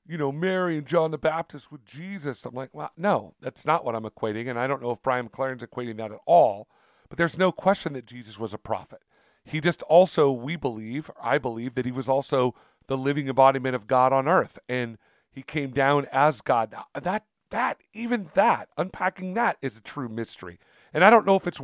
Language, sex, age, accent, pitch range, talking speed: English, male, 40-59, American, 125-165 Hz, 220 wpm